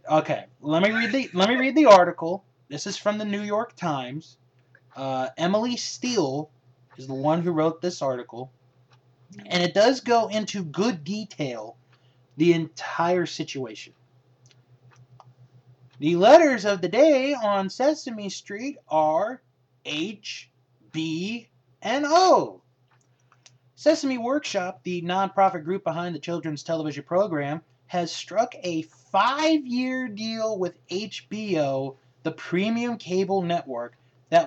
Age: 20-39